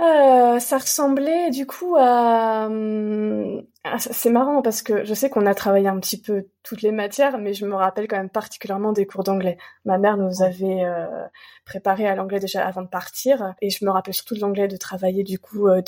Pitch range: 185-215 Hz